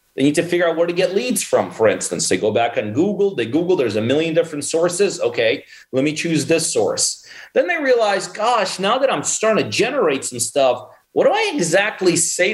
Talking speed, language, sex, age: 225 wpm, English, male, 30-49